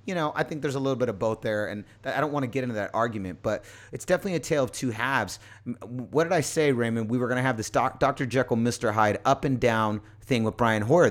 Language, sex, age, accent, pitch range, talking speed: English, male, 30-49, American, 115-165 Hz, 270 wpm